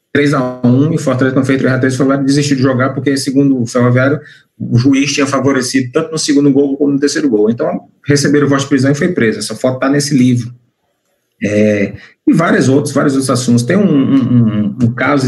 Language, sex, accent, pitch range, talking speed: Portuguese, male, Brazilian, 115-140 Hz, 210 wpm